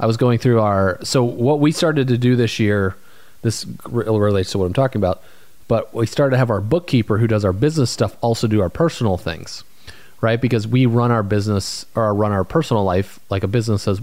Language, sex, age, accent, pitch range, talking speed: English, male, 30-49, American, 90-115 Hz, 220 wpm